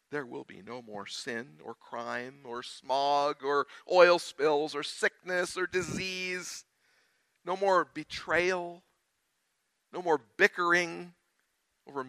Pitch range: 140-180 Hz